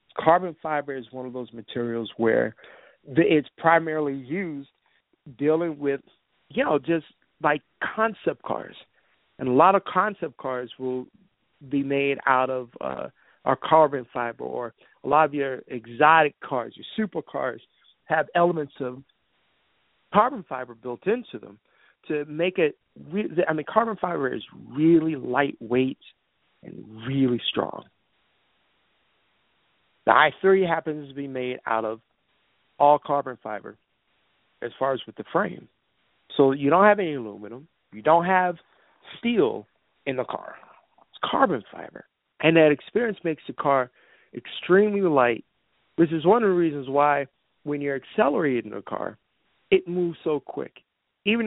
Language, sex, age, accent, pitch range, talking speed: English, male, 50-69, American, 130-170 Hz, 140 wpm